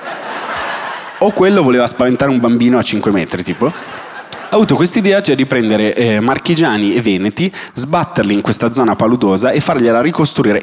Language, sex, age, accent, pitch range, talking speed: Italian, male, 30-49, native, 100-125 Hz, 160 wpm